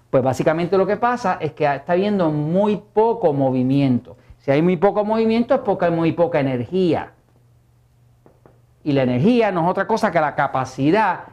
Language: Spanish